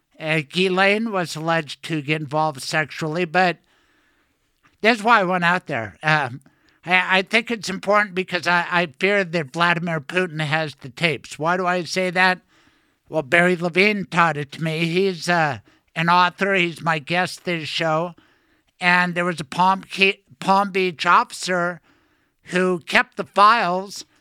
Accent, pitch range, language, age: American, 165-195 Hz, English, 60-79